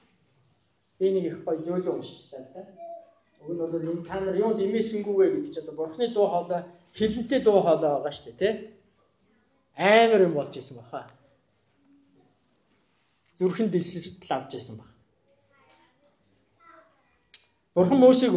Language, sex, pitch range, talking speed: English, male, 170-250 Hz, 125 wpm